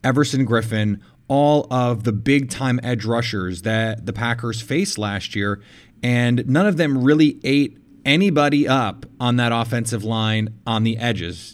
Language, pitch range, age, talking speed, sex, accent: English, 115-140 Hz, 30-49, 150 wpm, male, American